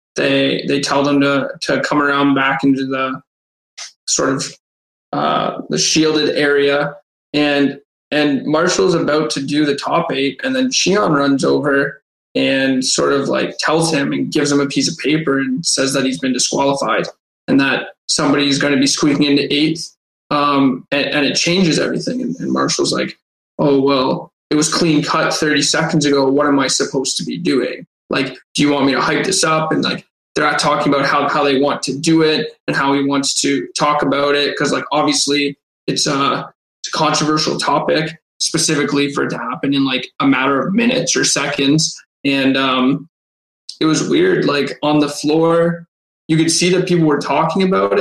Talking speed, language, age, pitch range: 190 wpm, English, 20-39, 135-155 Hz